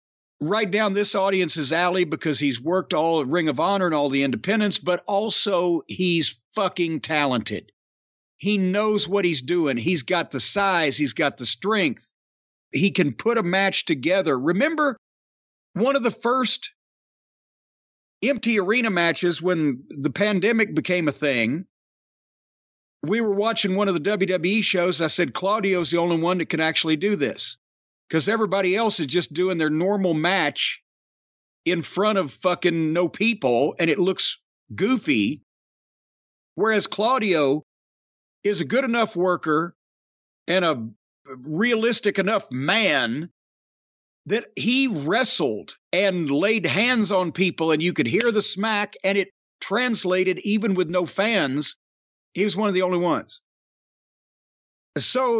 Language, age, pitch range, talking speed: English, 50-69, 160-210 Hz, 145 wpm